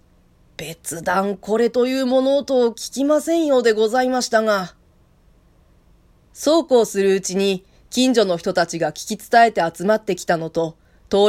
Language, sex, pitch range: Japanese, female, 175-245 Hz